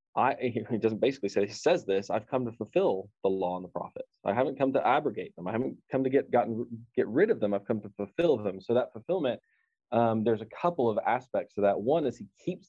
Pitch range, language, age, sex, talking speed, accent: 110-150 Hz, English, 20-39, male, 250 wpm, American